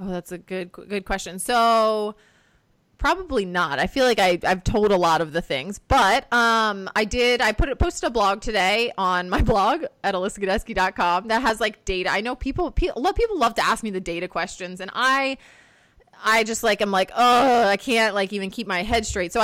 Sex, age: female, 20-39